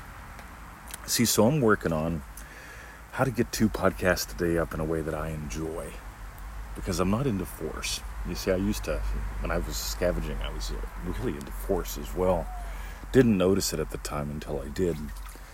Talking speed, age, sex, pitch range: 190 wpm, 40-59, male, 75-100 Hz